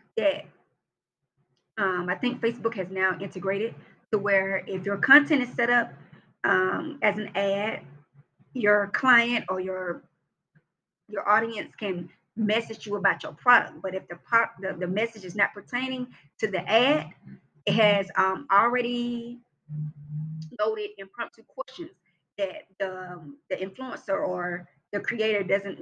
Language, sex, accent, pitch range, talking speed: English, female, American, 185-225 Hz, 140 wpm